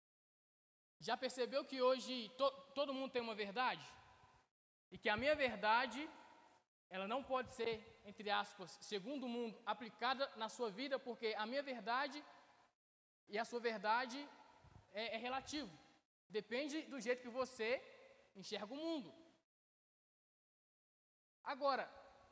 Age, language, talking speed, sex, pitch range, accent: 20-39, Portuguese, 130 wpm, male, 235-285 Hz, Brazilian